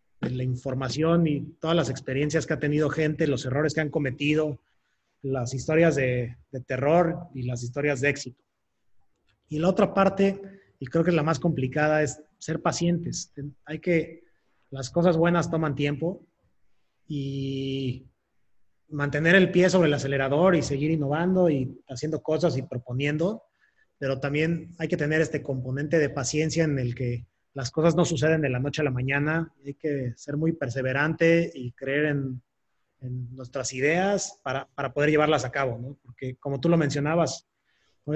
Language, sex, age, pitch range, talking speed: Spanish, male, 30-49, 135-165 Hz, 170 wpm